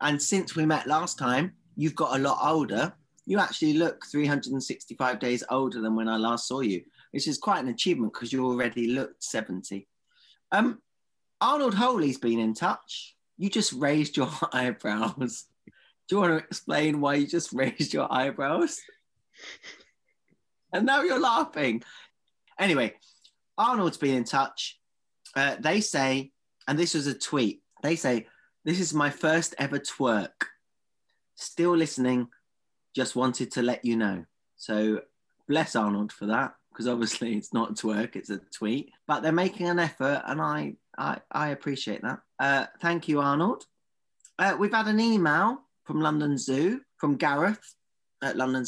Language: English